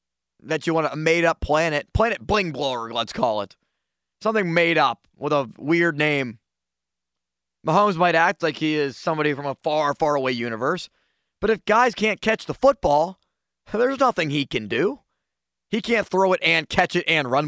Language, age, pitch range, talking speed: English, 20-39, 105-160 Hz, 180 wpm